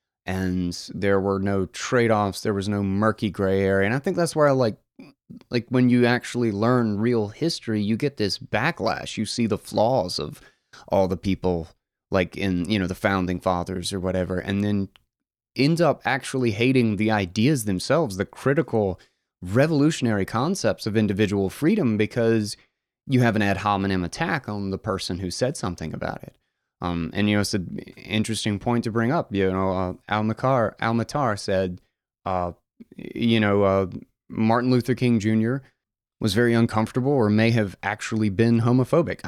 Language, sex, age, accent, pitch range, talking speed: English, male, 30-49, American, 95-120 Hz, 170 wpm